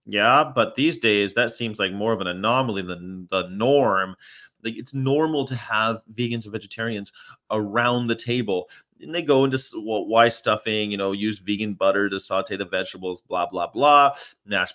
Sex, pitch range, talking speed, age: male, 100-130 Hz, 185 wpm, 30-49